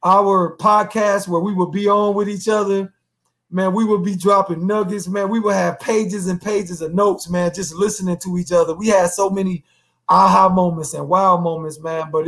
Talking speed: 205 wpm